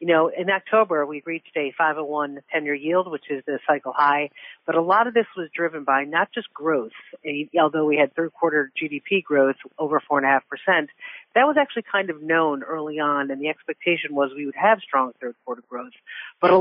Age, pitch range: 40-59, 145-180 Hz